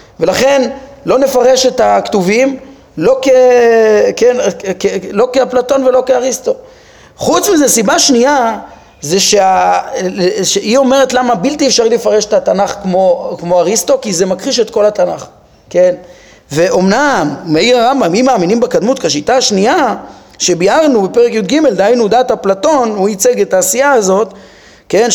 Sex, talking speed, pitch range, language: male, 135 wpm, 195-270 Hz, Hebrew